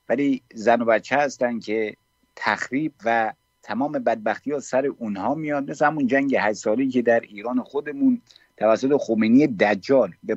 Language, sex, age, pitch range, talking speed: English, male, 50-69, 125-165 Hz, 155 wpm